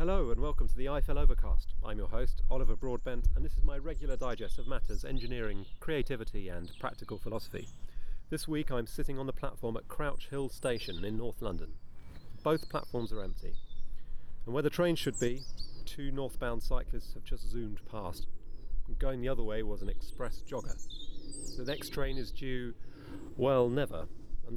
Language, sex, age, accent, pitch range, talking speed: English, male, 40-59, British, 85-130 Hz, 175 wpm